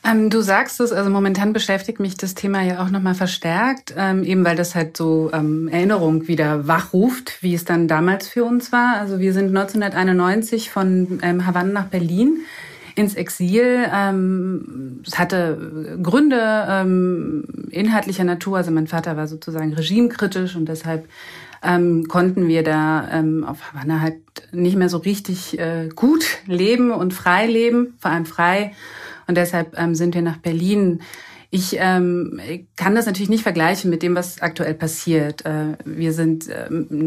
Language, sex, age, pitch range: German, female, 30-49, 165-200 Hz